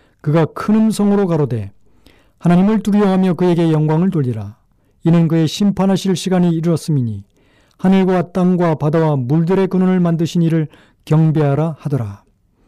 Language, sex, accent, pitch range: Korean, male, native, 140-185 Hz